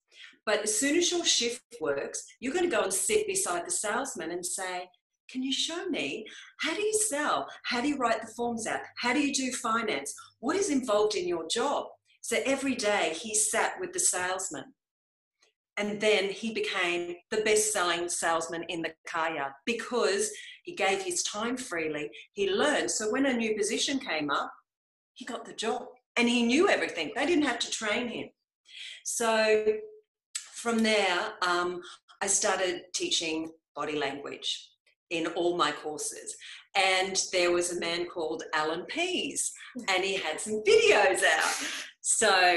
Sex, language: female, English